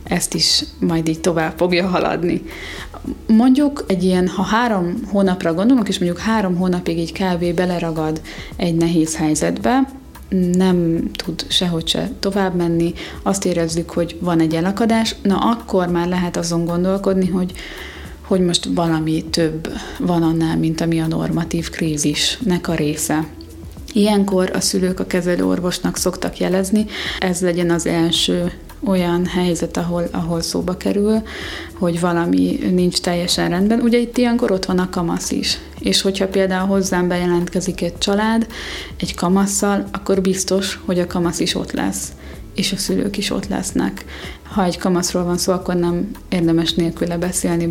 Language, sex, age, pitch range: Hungarian, female, 20-39, 170-195 Hz